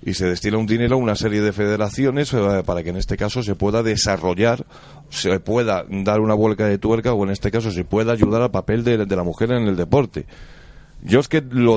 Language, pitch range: Spanish, 105-135 Hz